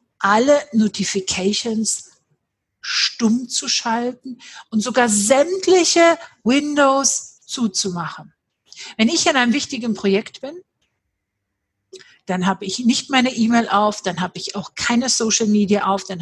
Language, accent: German, German